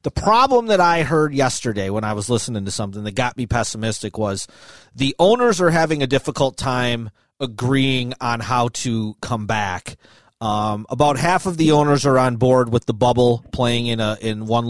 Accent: American